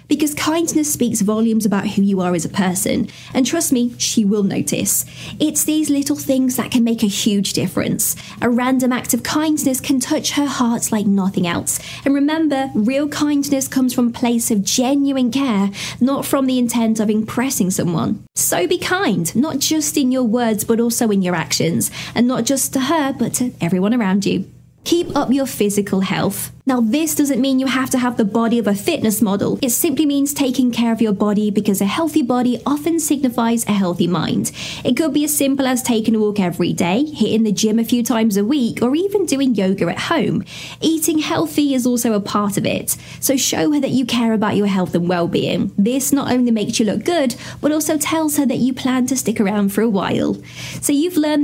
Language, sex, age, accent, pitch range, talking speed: English, female, 20-39, British, 215-280 Hz, 215 wpm